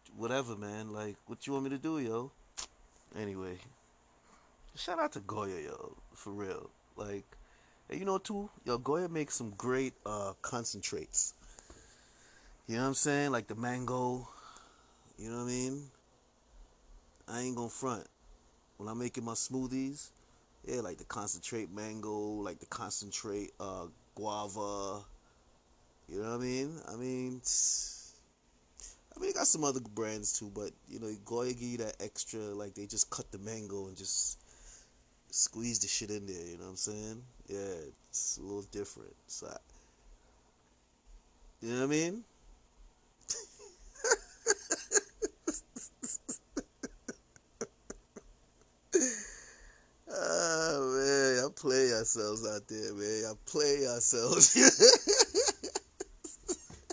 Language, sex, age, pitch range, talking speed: English, male, 30-49, 105-135 Hz, 135 wpm